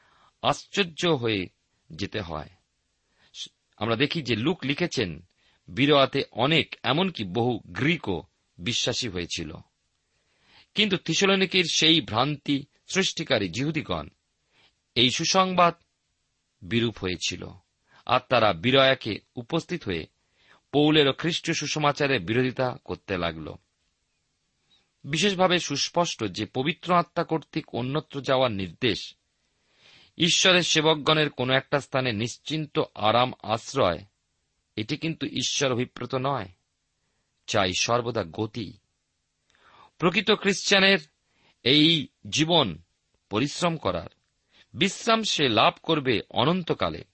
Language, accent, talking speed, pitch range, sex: Bengali, native, 95 wpm, 105-160 Hz, male